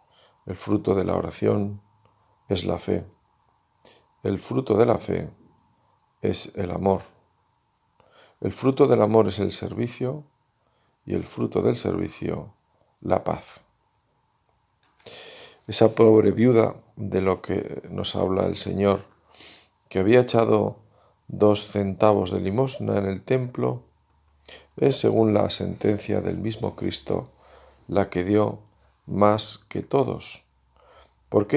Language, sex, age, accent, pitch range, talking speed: Spanish, male, 50-69, Spanish, 100-115 Hz, 120 wpm